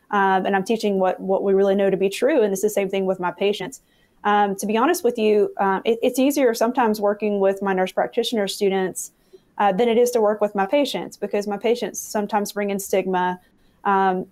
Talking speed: 225 wpm